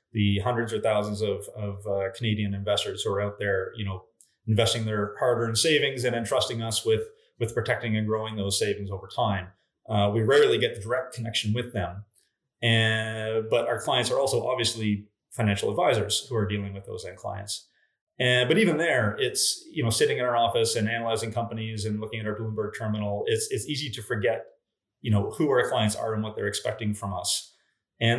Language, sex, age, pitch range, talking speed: English, male, 30-49, 105-125 Hz, 200 wpm